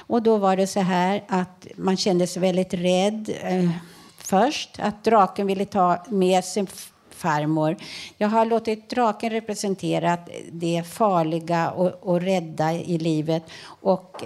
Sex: female